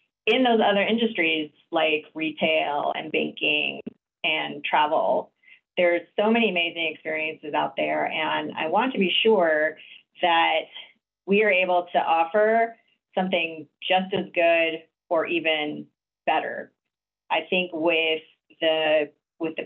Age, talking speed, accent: 30-49, 130 wpm, American